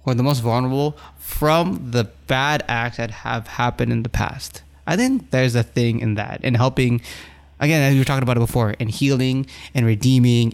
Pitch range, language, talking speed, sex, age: 110-130 Hz, English, 200 wpm, male, 20-39